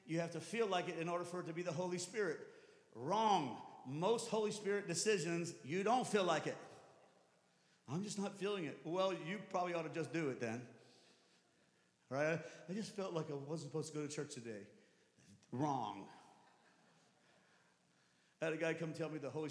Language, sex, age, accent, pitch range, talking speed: English, male, 40-59, American, 155-205 Hz, 190 wpm